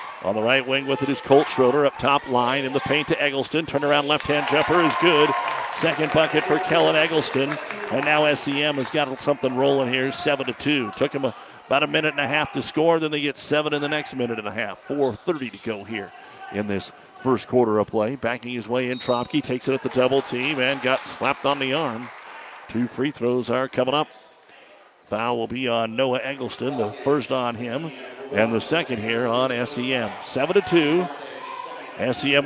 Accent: American